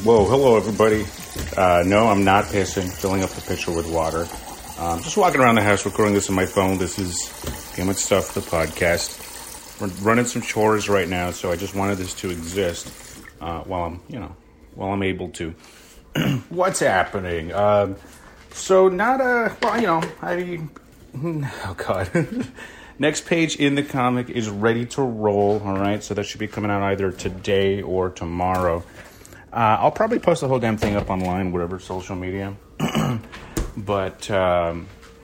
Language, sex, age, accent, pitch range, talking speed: English, male, 30-49, American, 90-110 Hz, 175 wpm